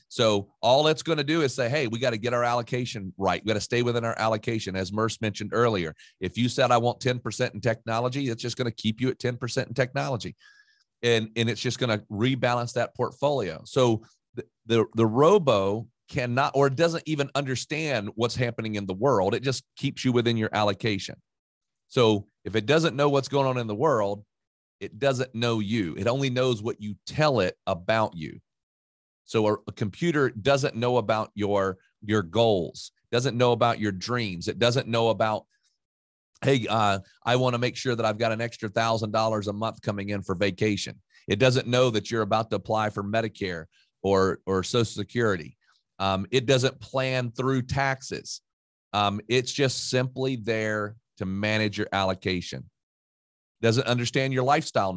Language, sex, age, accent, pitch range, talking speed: English, male, 40-59, American, 105-125 Hz, 190 wpm